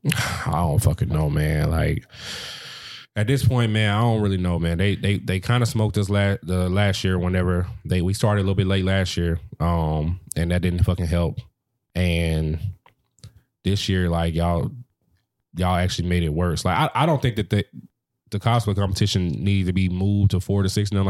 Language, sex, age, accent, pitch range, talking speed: English, male, 20-39, American, 90-110 Hz, 200 wpm